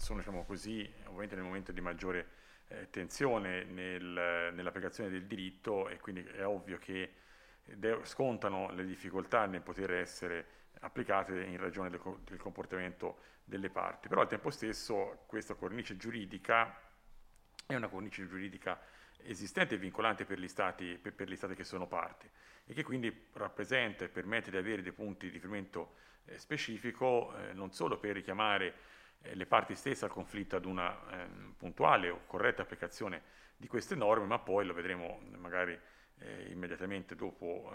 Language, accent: Italian, native